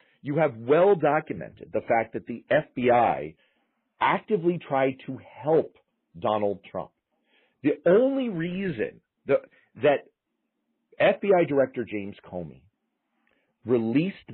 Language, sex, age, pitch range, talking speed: English, male, 40-59, 100-150 Hz, 100 wpm